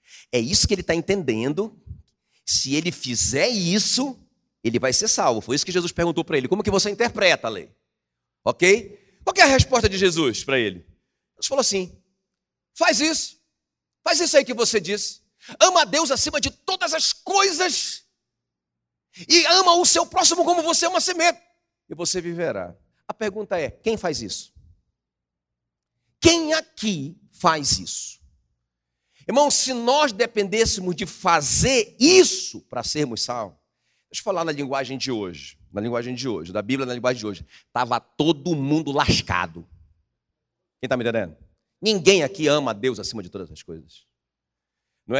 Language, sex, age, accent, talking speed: Portuguese, male, 40-59, Brazilian, 165 wpm